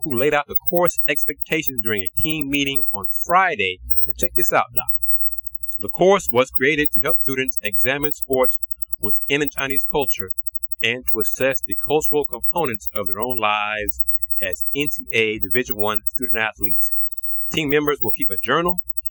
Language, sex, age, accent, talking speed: English, male, 30-49, American, 155 wpm